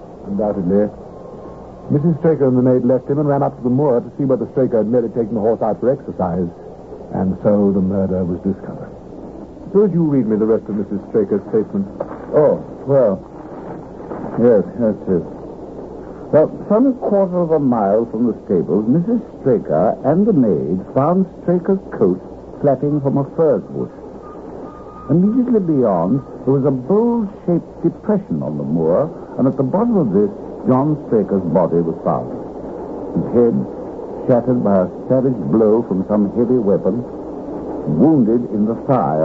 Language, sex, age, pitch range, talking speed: English, male, 60-79, 115-175 Hz, 160 wpm